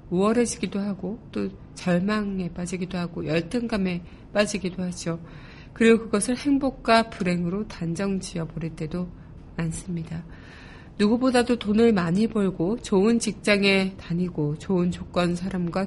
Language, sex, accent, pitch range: Korean, female, native, 170-220 Hz